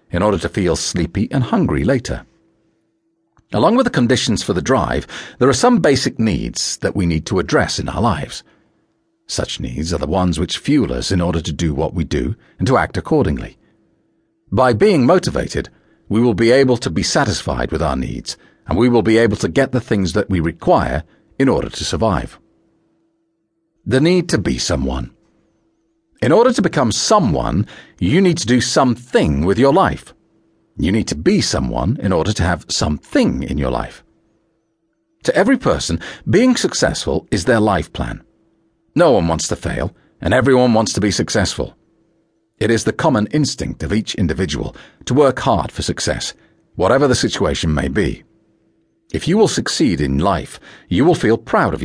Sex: male